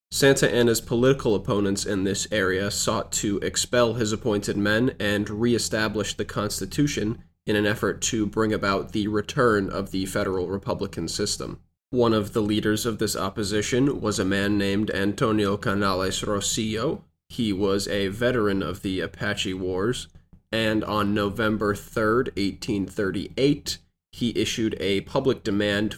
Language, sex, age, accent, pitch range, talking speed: English, male, 20-39, American, 95-110 Hz, 145 wpm